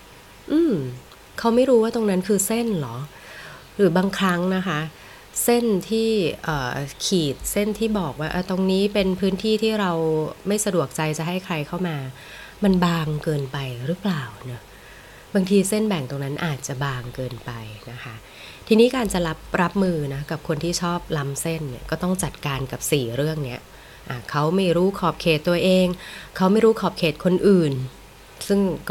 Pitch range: 140-180 Hz